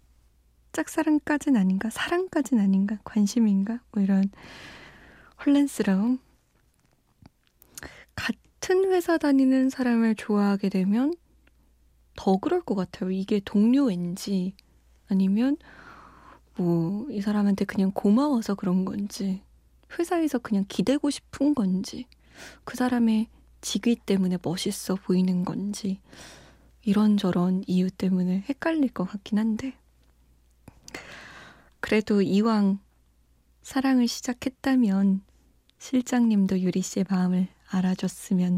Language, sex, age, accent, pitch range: Korean, female, 20-39, native, 185-235 Hz